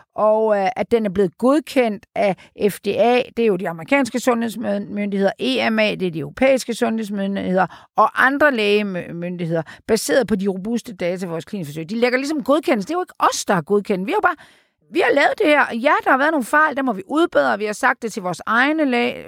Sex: female